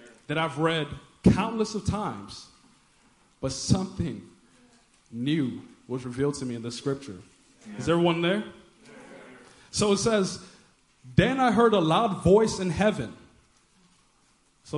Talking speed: 125 wpm